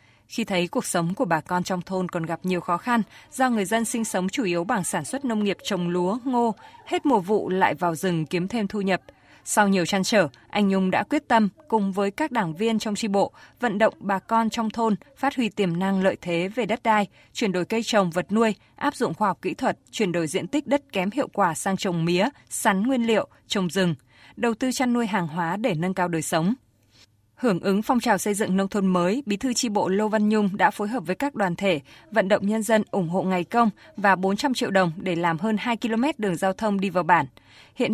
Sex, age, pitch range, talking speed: female, 20-39, 180-235 Hz, 250 wpm